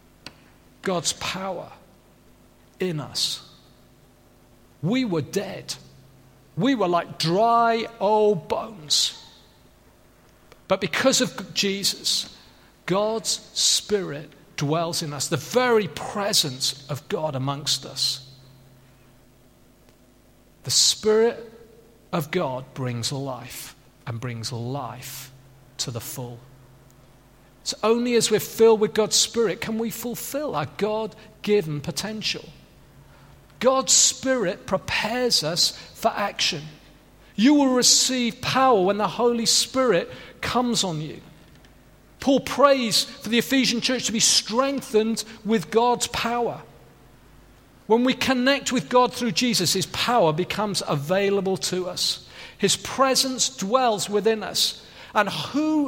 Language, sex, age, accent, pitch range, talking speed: English, male, 40-59, British, 135-230 Hz, 115 wpm